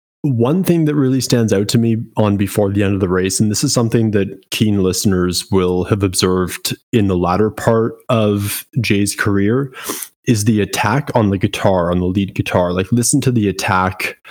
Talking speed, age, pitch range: 195 wpm, 20-39, 95-120 Hz